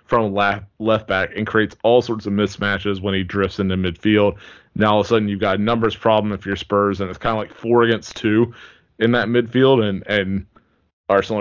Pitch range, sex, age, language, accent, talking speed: 100-125 Hz, male, 20-39, English, American, 215 wpm